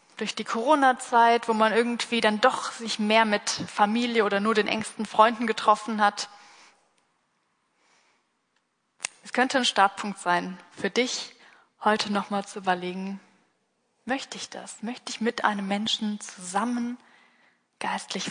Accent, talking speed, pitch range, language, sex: German, 130 wpm, 205-245 Hz, German, female